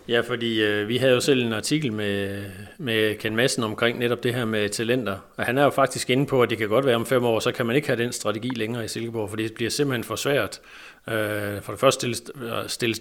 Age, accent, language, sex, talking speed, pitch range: 40-59, native, Danish, male, 260 wpm, 110-130 Hz